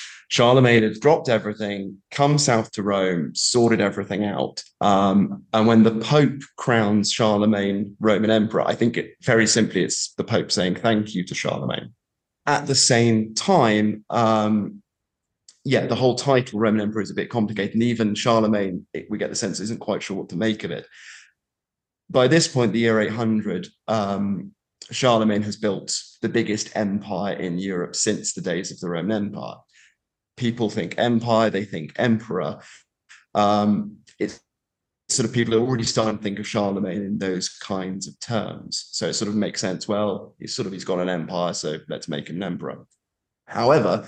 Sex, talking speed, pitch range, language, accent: male, 175 wpm, 105-115 Hz, English, British